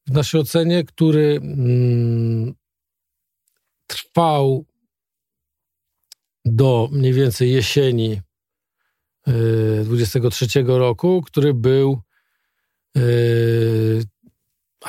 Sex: male